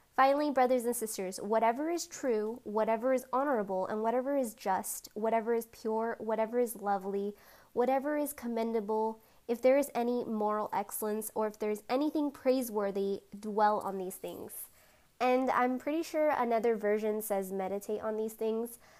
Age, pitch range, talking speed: 10-29, 210-245 Hz, 160 wpm